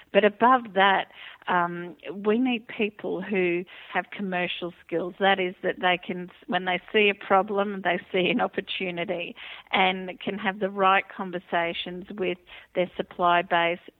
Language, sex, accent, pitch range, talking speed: English, female, Australian, 175-205 Hz, 150 wpm